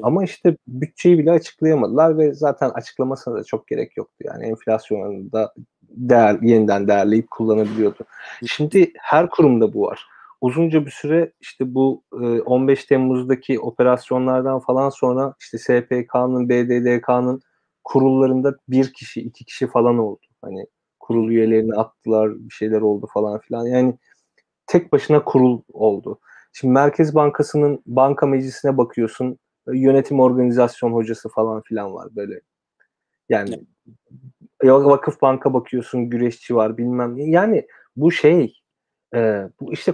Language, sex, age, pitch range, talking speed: Turkish, male, 30-49, 115-135 Hz, 125 wpm